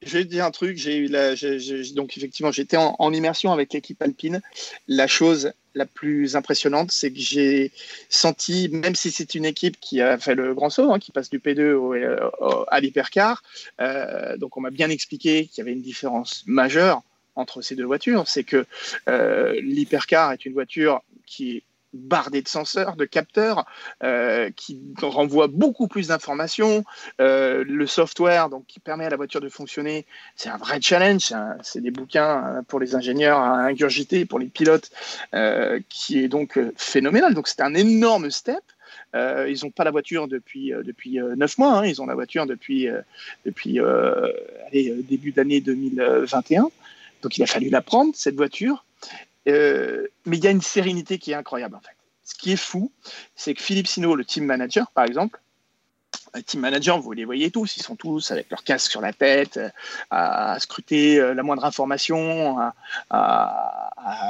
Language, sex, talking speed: French, male, 180 wpm